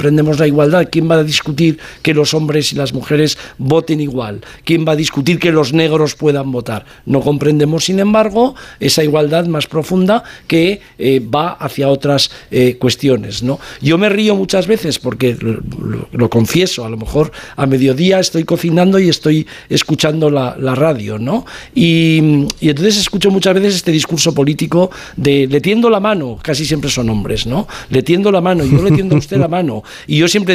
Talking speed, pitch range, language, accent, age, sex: 190 wpm, 150-195 Hz, Spanish, Spanish, 50-69, male